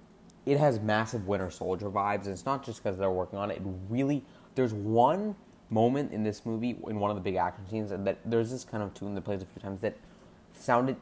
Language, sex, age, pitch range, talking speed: English, male, 20-39, 95-120 Hz, 235 wpm